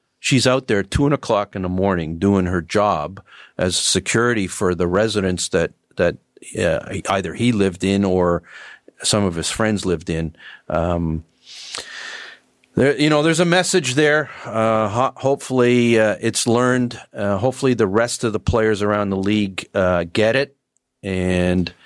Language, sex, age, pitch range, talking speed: English, male, 50-69, 95-125 Hz, 155 wpm